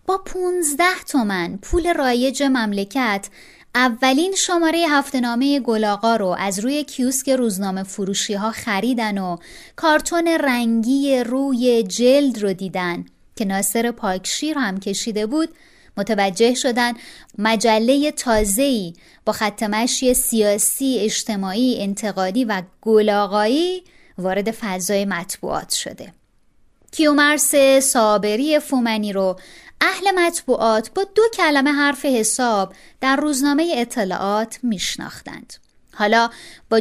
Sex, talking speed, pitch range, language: female, 105 wpm, 210-280 Hz, Persian